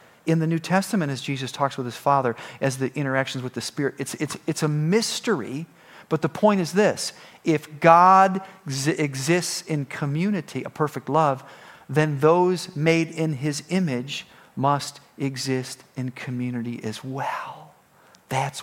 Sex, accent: male, American